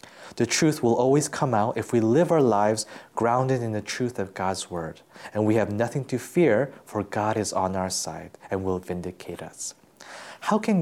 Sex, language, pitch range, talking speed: male, English, 110-140 Hz, 200 wpm